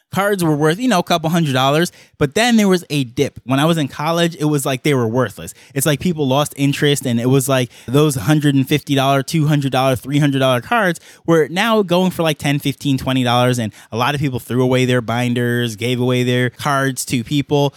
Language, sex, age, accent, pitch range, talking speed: English, male, 20-39, American, 130-160 Hz, 215 wpm